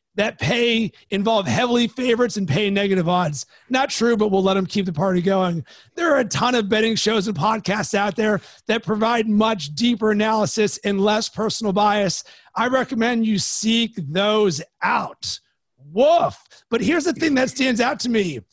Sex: male